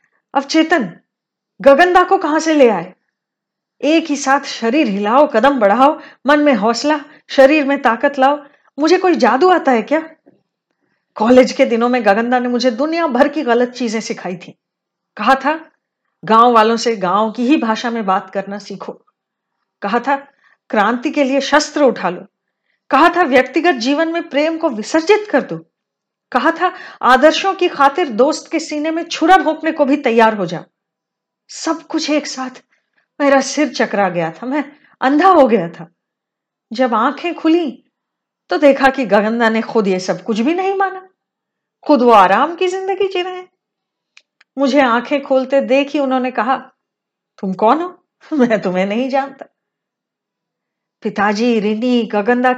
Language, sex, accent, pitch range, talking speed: Hindi, female, native, 230-310 Hz, 160 wpm